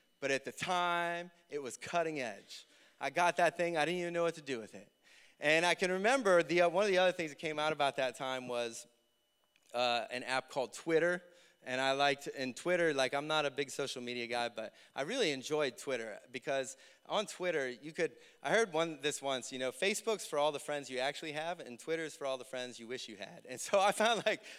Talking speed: 235 wpm